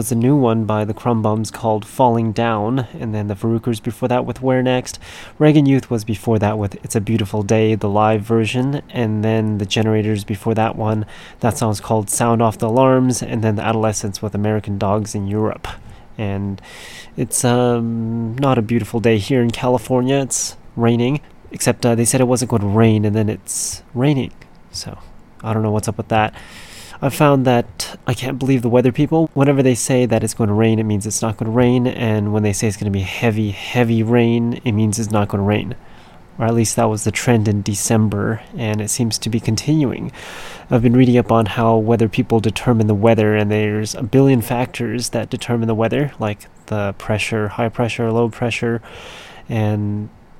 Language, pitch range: English, 110-125 Hz